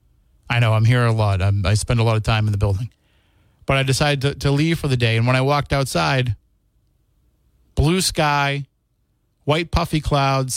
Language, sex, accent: English, male, American